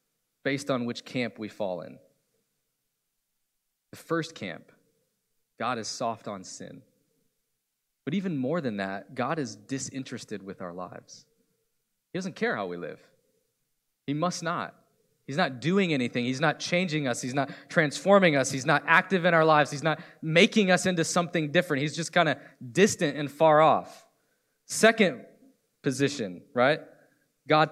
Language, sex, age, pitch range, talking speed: English, male, 20-39, 135-175 Hz, 155 wpm